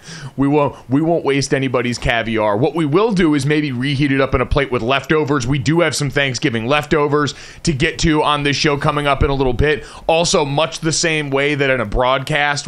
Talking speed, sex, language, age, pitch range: 225 wpm, male, English, 30-49, 120-150 Hz